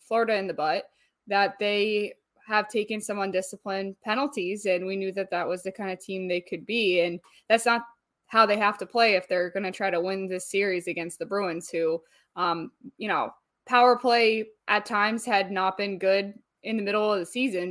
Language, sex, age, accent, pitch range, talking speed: English, female, 20-39, American, 185-225 Hz, 210 wpm